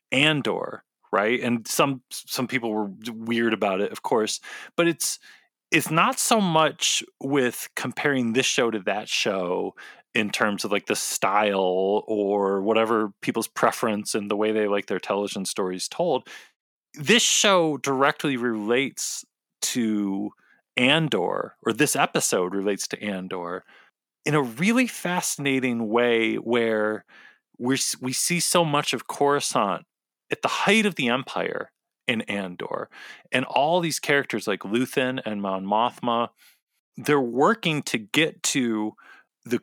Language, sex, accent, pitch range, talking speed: English, male, American, 110-155 Hz, 140 wpm